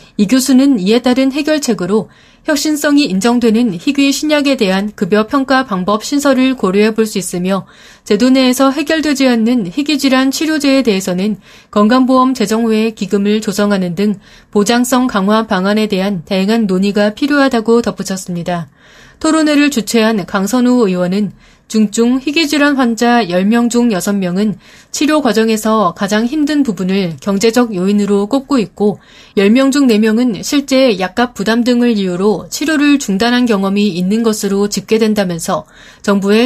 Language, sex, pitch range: Korean, female, 200-260 Hz